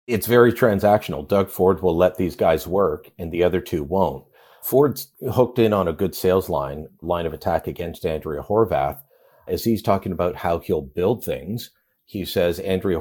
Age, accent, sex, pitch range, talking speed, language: 50-69, American, male, 90-120 Hz, 185 wpm, English